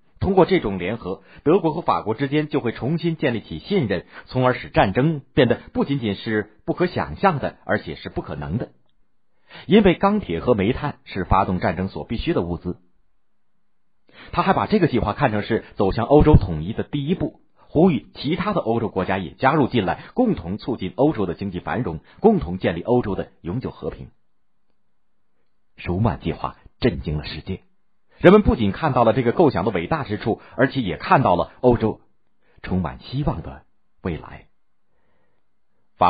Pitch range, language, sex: 95-135 Hz, Chinese, male